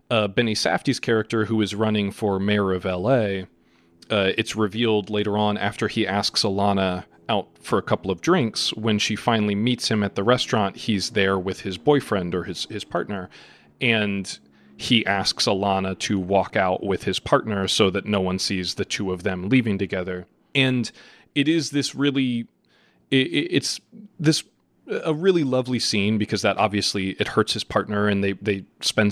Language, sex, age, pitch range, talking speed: English, male, 30-49, 100-120 Hz, 175 wpm